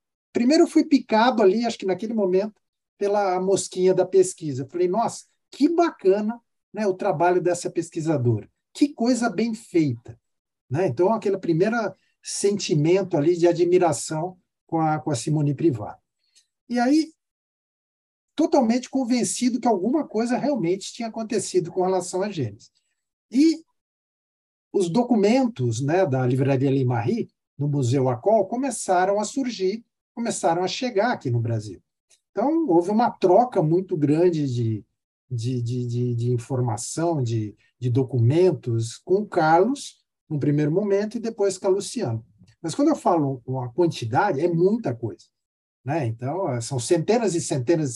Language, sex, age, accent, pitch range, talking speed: Portuguese, male, 50-69, Brazilian, 140-225 Hz, 140 wpm